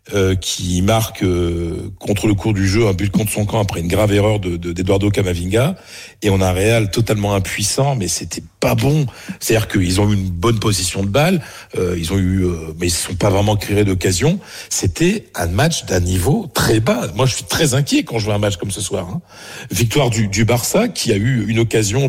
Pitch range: 95-115 Hz